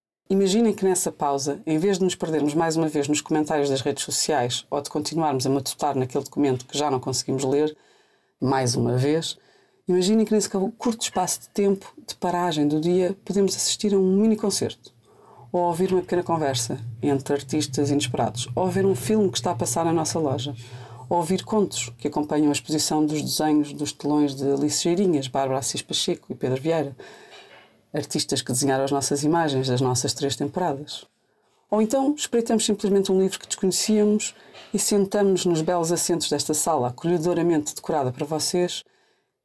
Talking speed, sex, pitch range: 175 wpm, female, 140-180 Hz